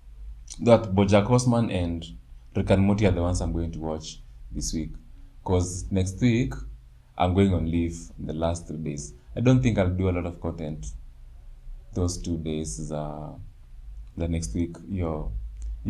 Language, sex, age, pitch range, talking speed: Swahili, male, 20-39, 80-100 Hz, 165 wpm